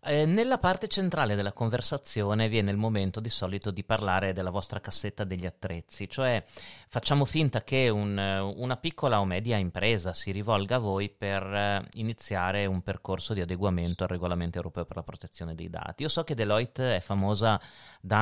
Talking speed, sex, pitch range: 170 wpm, male, 95-120 Hz